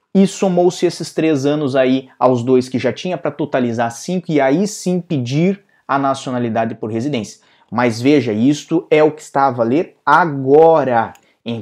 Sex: male